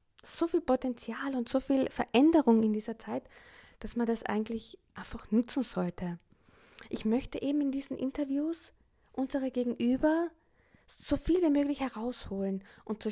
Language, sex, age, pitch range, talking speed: German, female, 20-39, 220-280 Hz, 145 wpm